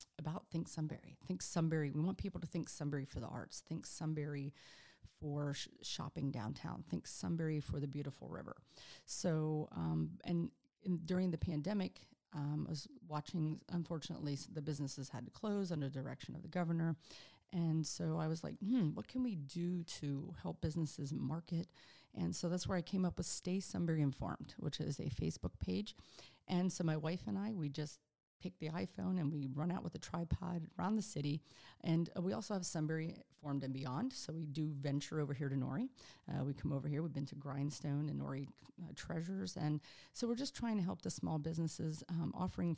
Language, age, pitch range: English, 40-59, 145-175 Hz